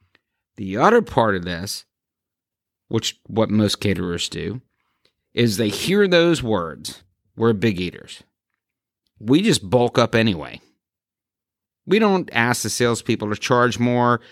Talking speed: 130 wpm